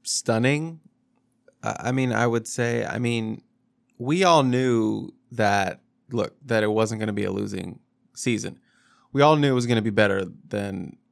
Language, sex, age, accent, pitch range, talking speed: English, male, 20-39, American, 105-125 Hz, 175 wpm